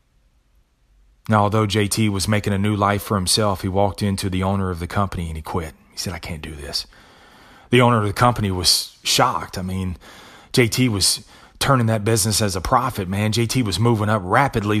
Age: 30-49